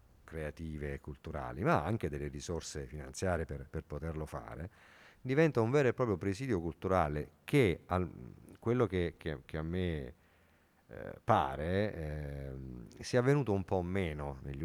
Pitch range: 75-105 Hz